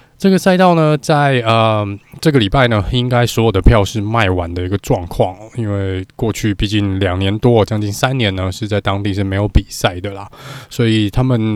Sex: male